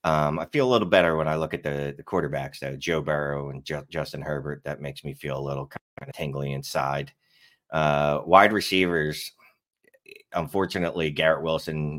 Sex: male